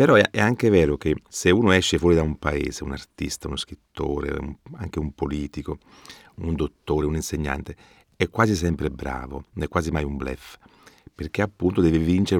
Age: 40-59